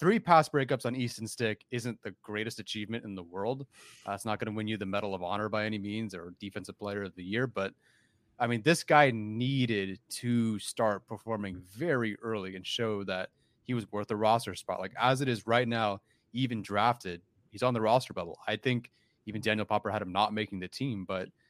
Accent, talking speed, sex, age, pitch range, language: American, 220 wpm, male, 30-49, 105-125 Hz, English